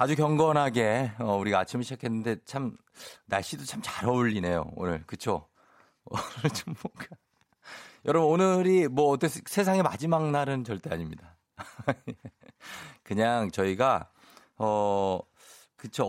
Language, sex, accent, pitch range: Korean, male, native, 95-130 Hz